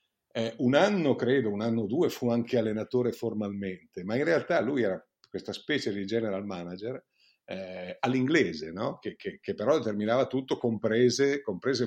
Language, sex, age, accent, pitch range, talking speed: Italian, male, 50-69, native, 100-125 Hz, 165 wpm